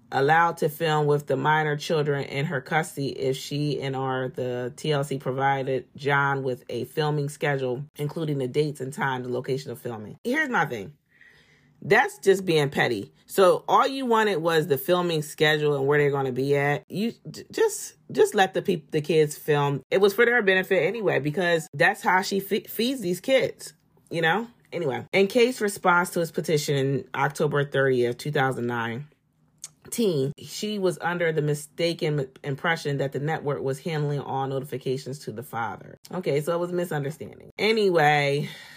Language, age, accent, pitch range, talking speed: English, 30-49, American, 135-190 Hz, 175 wpm